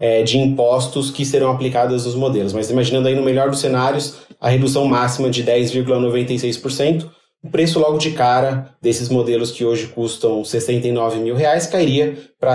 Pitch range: 125-150 Hz